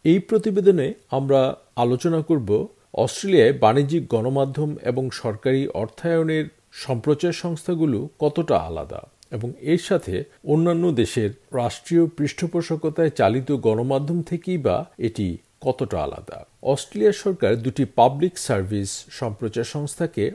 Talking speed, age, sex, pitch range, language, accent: 105 wpm, 50-69, male, 115-165 Hz, Bengali, native